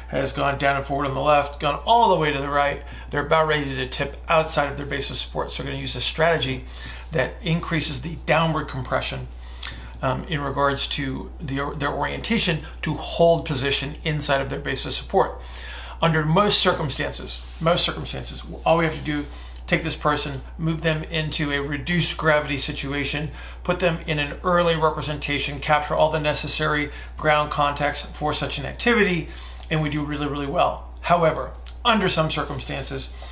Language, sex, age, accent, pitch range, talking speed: English, male, 40-59, American, 135-155 Hz, 175 wpm